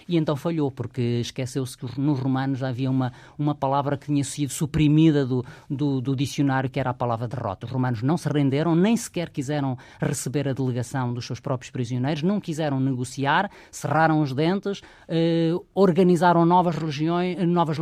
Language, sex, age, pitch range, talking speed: Portuguese, female, 20-39, 130-165 Hz, 165 wpm